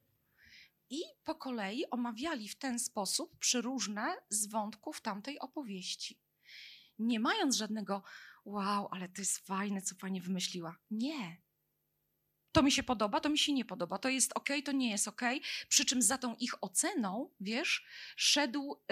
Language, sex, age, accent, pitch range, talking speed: Polish, female, 20-39, native, 205-270 Hz, 155 wpm